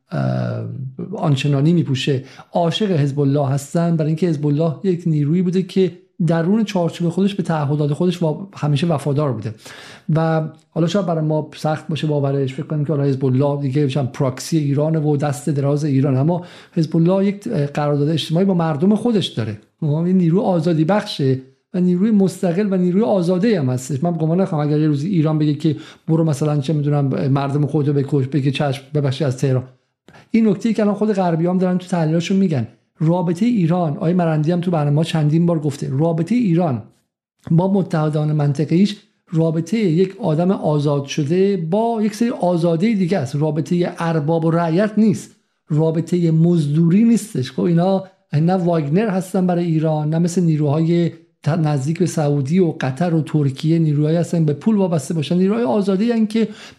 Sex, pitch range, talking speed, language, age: male, 150-190 Hz, 175 wpm, Persian, 50-69